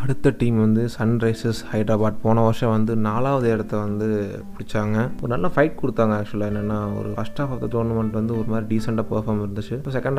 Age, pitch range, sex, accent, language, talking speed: 20-39, 110-125 Hz, male, native, Tamil, 190 wpm